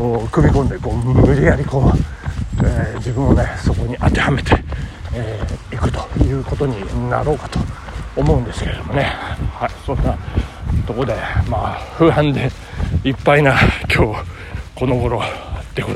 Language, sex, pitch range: Japanese, male, 95-145 Hz